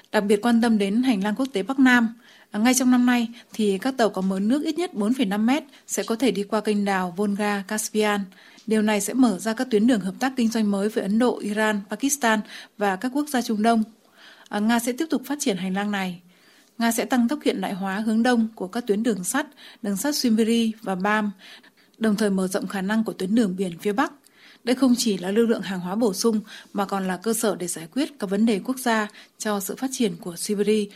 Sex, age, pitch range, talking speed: female, 20-39, 200-245 Hz, 250 wpm